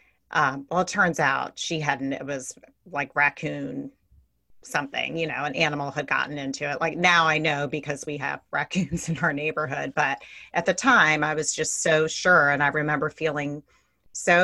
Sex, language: female, English